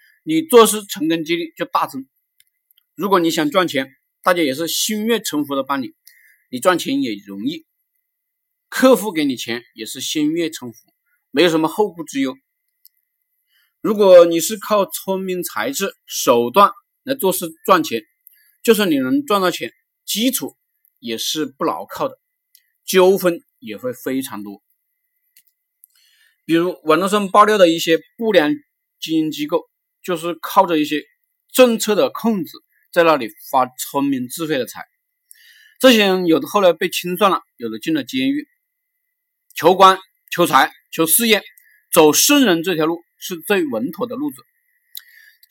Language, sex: Chinese, male